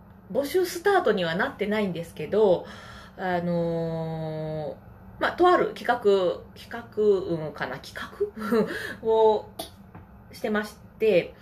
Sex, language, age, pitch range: female, Japanese, 20-39, 165-250 Hz